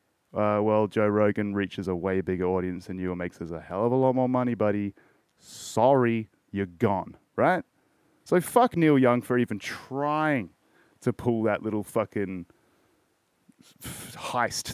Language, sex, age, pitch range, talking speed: English, male, 30-49, 105-135 Hz, 160 wpm